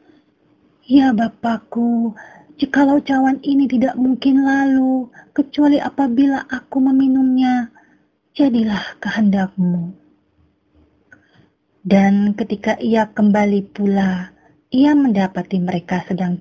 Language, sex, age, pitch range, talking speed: Indonesian, female, 30-49, 195-255 Hz, 85 wpm